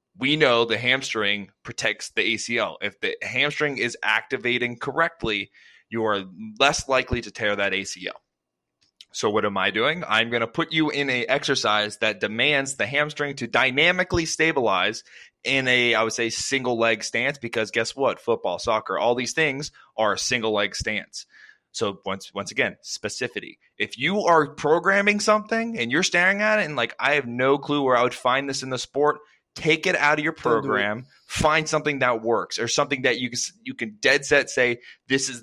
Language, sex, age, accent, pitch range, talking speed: English, male, 20-39, American, 115-145 Hz, 190 wpm